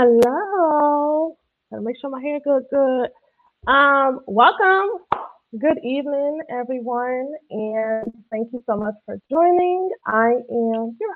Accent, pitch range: American, 195-280 Hz